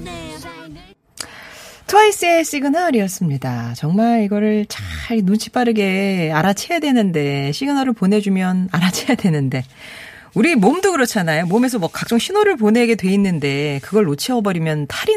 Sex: female